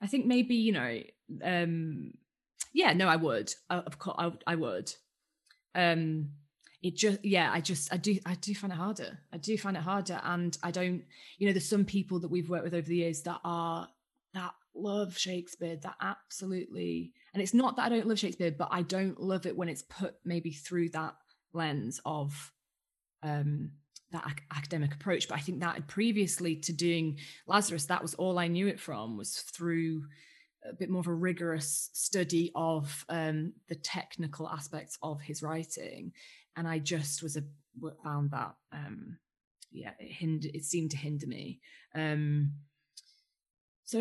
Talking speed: 175 wpm